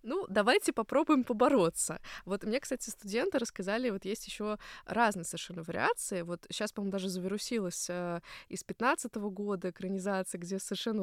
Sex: female